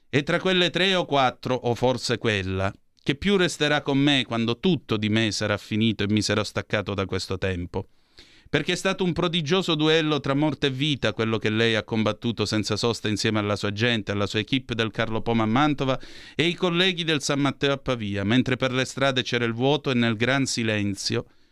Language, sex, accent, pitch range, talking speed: Italian, male, native, 110-145 Hz, 210 wpm